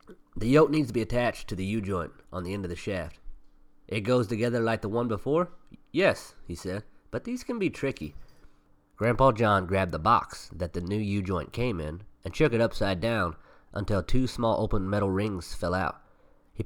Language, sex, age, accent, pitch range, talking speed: English, male, 30-49, American, 85-115 Hz, 200 wpm